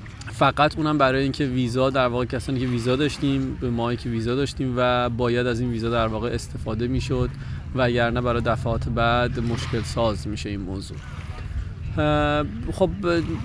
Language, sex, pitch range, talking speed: Persian, male, 120-140 Hz, 155 wpm